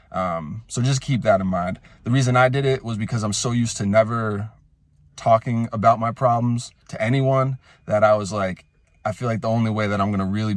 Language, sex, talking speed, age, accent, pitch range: English, male, 220 wpm, 20-39, American, 100-120 Hz